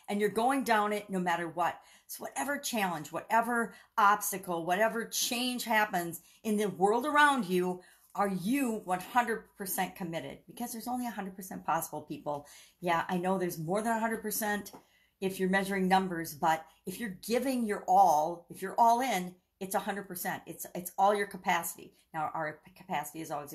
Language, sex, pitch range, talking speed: English, female, 180-235 Hz, 165 wpm